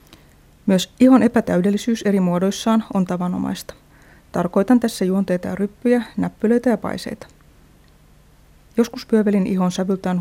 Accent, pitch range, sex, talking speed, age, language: native, 180-210 Hz, female, 110 wpm, 30-49, Finnish